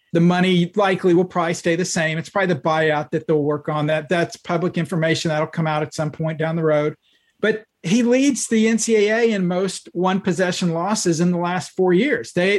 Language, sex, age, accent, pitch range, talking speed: English, male, 40-59, American, 165-200 Hz, 210 wpm